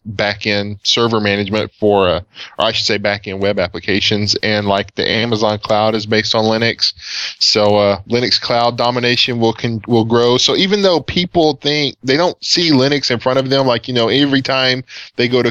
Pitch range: 105-125 Hz